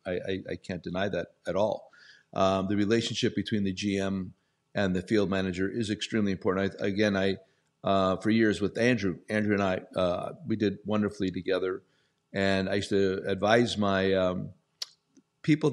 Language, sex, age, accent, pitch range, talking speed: English, male, 50-69, American, 95-110 Hz, 170 wpm